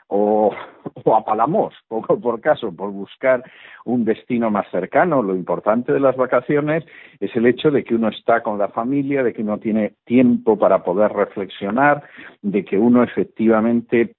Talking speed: 165 wpm